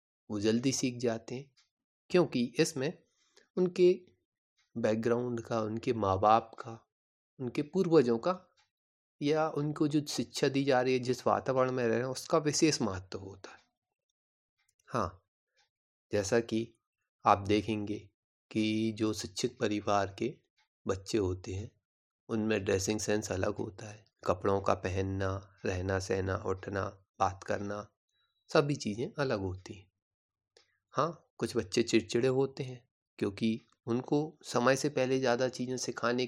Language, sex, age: Hindi, male, 30-49